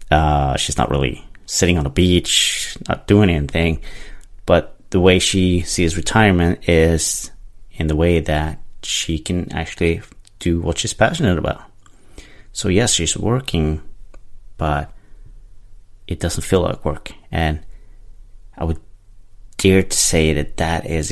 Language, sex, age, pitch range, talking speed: English, male, 30-49, 80-105 Hz, 140 wpm